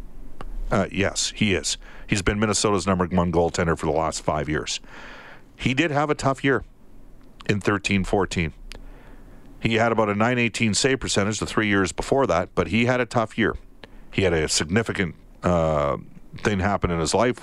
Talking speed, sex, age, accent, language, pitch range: 180 wpm, male, 50-69, American, English, 90-115 Hz